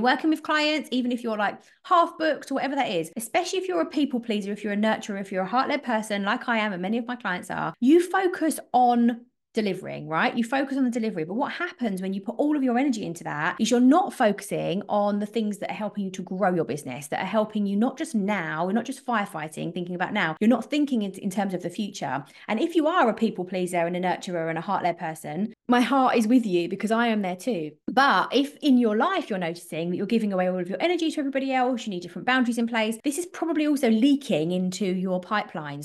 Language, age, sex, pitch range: English, 30-49, female, 185-265 Hz